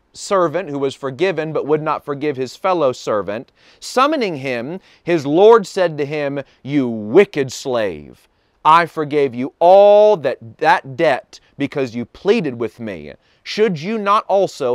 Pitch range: 125-175 Hz